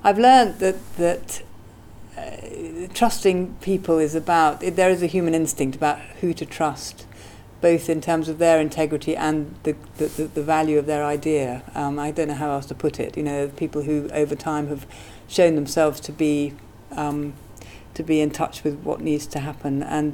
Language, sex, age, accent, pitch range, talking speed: English, female, 50-69, British, 140-155 Hz, 190 wpm